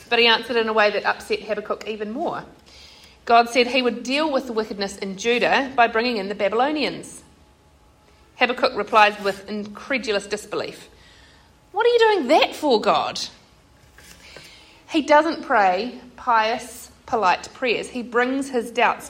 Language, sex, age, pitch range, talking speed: English, female, 40-59, 210-260 Hz, 150 wpm